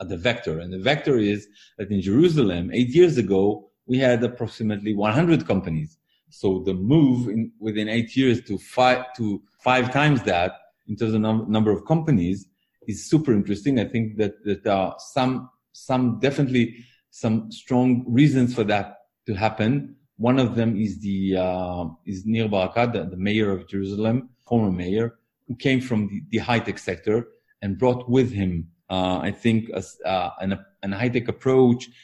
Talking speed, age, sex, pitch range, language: 175 wpm, 40-59, male, 100-120 Hz, English